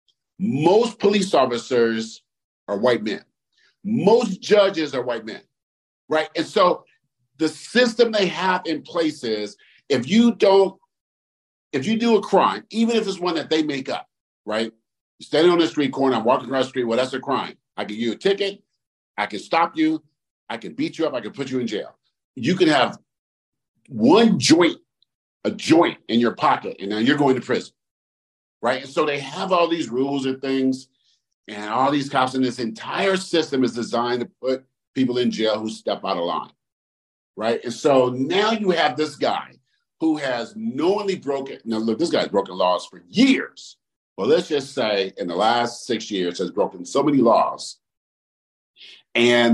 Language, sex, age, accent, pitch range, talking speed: English, male, 50-69, American, 115-175 Hz, 185 wpm